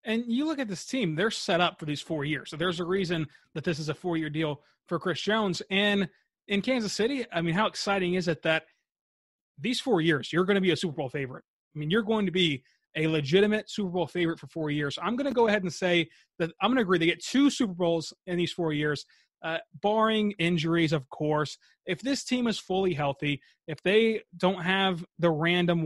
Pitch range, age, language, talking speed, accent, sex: 160-205 Hz, 30-49, English, 235 wpm, American, male